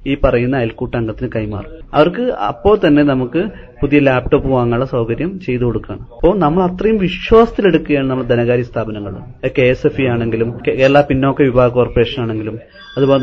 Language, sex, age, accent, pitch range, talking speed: Malayalam, male, 30-49, native, 125-160 Hz, 135 wpm